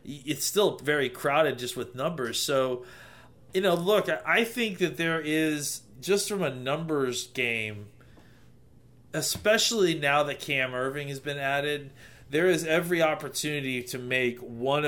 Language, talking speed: English, 145 wpm